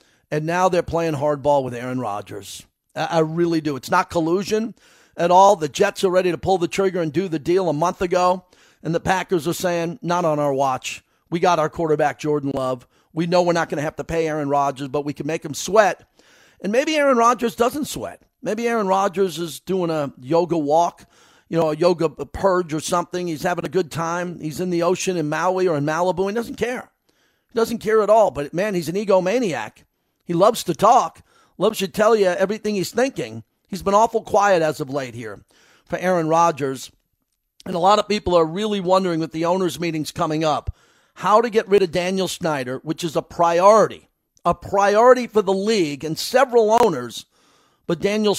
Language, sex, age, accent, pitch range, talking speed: English, male, 50-69, American, 160-200 Hz, 210 wpm